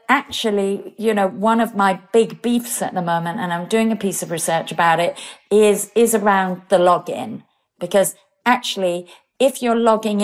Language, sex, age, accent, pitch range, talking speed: English, female, 50-69, British, 170-220 Hz, 175 wpm